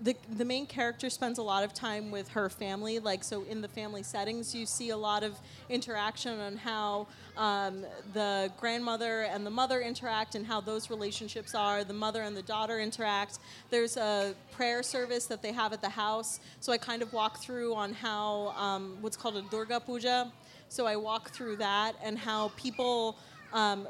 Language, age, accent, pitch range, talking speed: English, 30-49, American, 205-235 Hz, 195 wpm